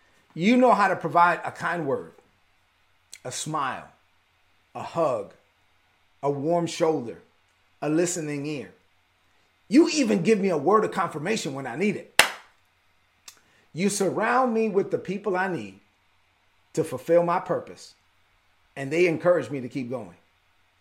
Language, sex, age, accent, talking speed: English, male, 40-59, American, 140 wpm